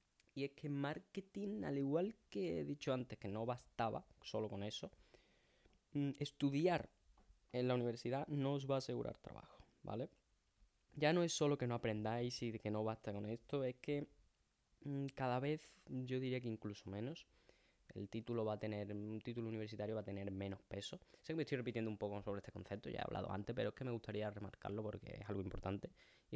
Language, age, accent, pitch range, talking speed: Spanish, 10-29, Spanish, 105-130 Hz, 190 wpm